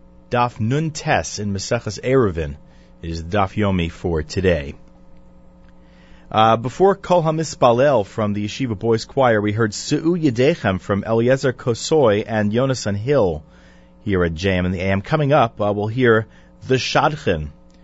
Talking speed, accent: 150 wpm, American